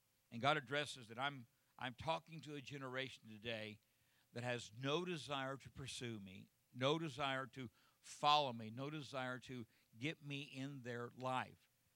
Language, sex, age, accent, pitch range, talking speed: English, male, 60-79, American, 125-145 Hz, 155 wpm